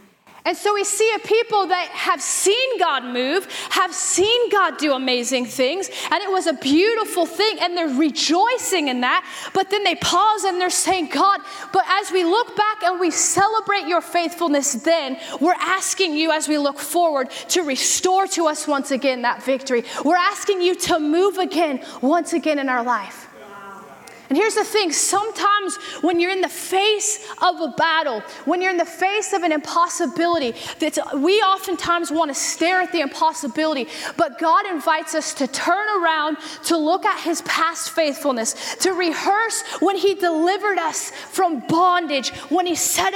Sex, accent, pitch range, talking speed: female, American, 310-375 Hz, 175 wpm